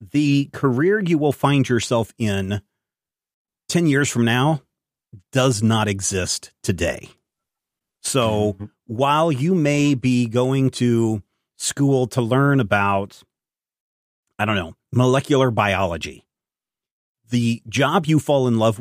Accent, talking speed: American, 120 wpm